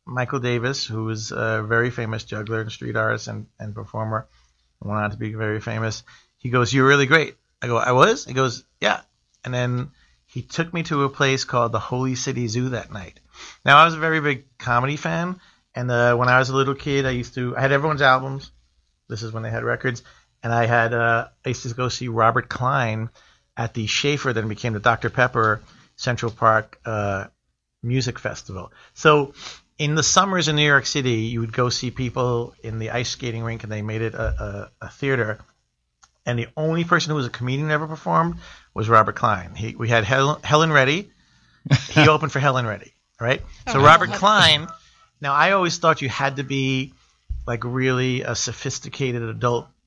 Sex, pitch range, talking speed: male, 115-135 Hz, 200 wpm